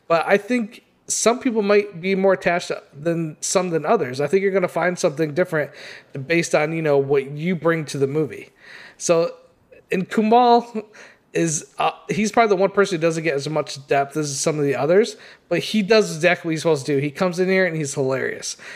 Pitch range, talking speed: 155-190 Hz, 220 wpm